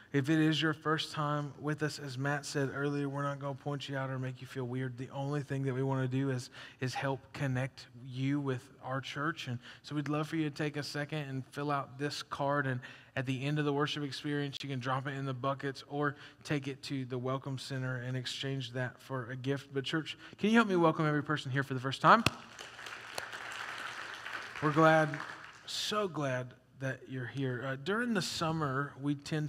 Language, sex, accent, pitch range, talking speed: English, male, American, 130-145 Hz, 225 wpm